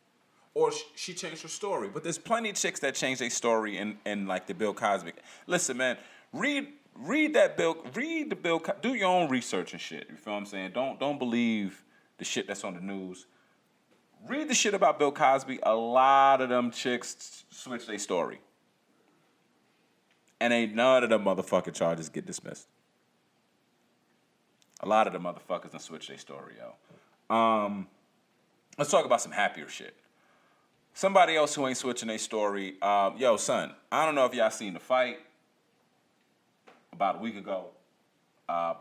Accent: American